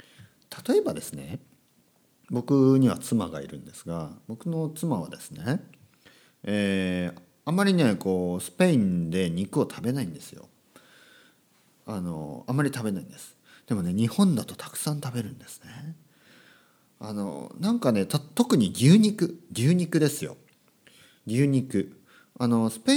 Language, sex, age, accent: Japanese, male, 40-59, native